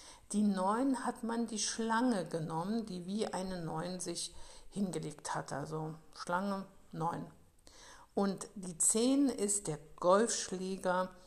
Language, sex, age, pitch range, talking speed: German, female, 60-79, 170-215 Hz, 120 wpm